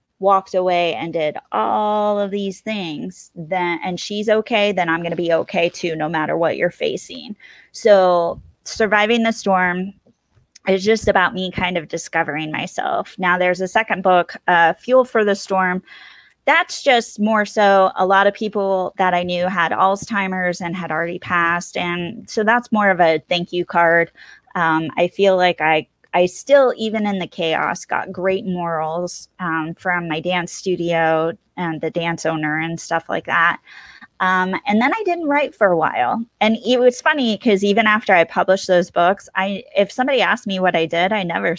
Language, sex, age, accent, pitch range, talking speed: English, female, 20-39, American, 175-210 Hz, 185 wpm